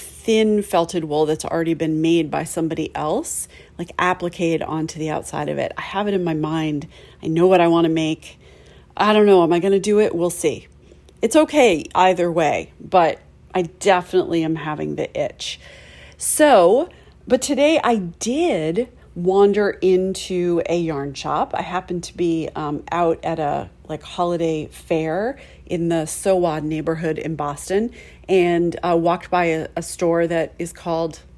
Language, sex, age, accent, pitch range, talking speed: English, female, 40-59, American, 165-210 Hz, 170 wpm